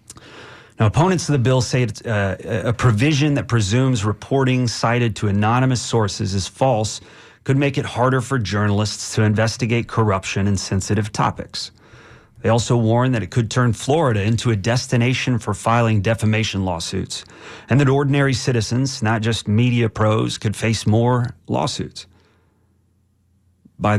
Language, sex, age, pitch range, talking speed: English, male, 30-49, 105-130 Hz, 145 wpm